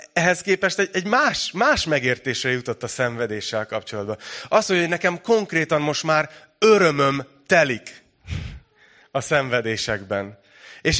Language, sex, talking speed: Hungarian, male, 120 wpm